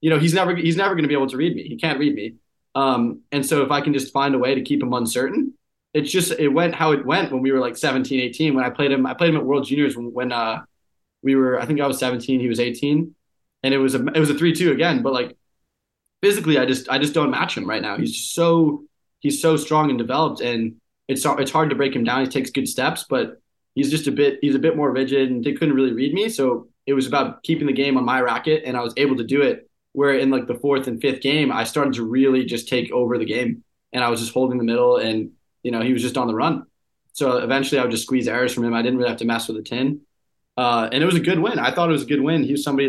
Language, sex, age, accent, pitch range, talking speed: English, male, 20-39, American, 125-150 Hz, 290 wpm